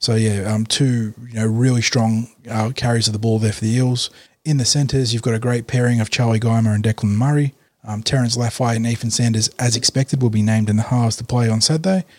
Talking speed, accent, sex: 240 wpm, Australian, male